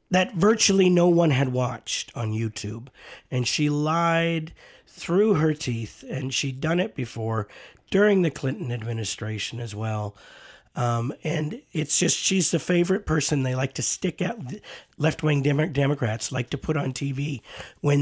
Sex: male